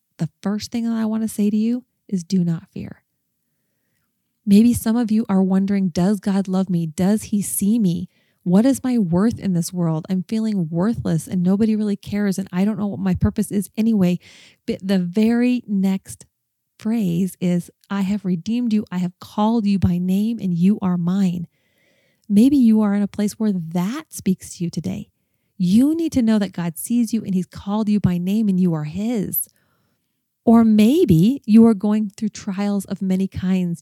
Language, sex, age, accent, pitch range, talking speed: English, female, 30-49, American, 180-215 Hz, 200 wpm